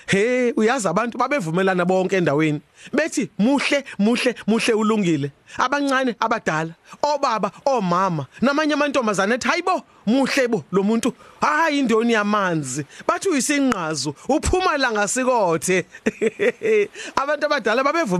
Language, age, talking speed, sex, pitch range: English, 40-59, 130 wpm, male, 185-275 Hz